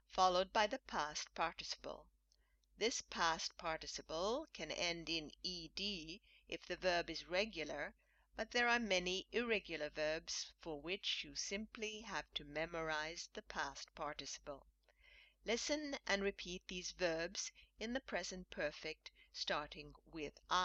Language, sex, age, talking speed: English, female, 50-69, 130 wpm